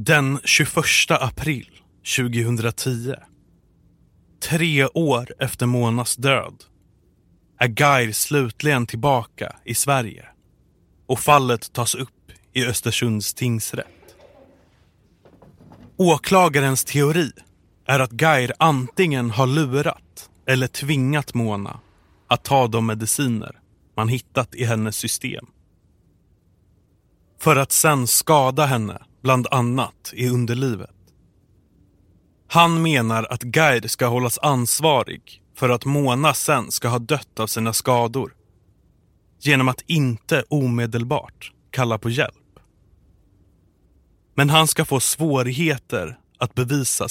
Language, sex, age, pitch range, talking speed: Swedish, male, 30-49, 110-140 Hz, 105 wpm